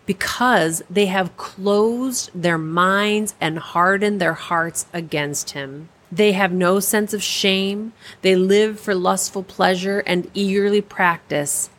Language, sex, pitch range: English, female, 170-225 Hz